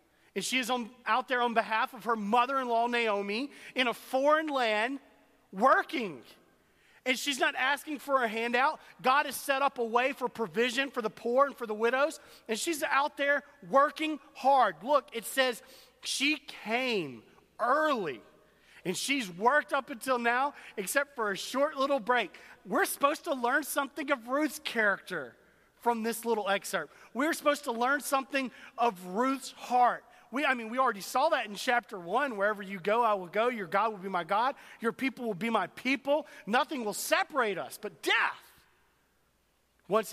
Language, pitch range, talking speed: English, 195-275 Hz, 175 wpm